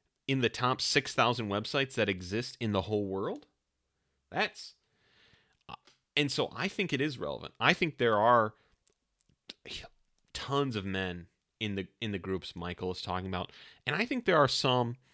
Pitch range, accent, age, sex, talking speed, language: 95-120 Hz, American, 30-49, male, 165 wpm, English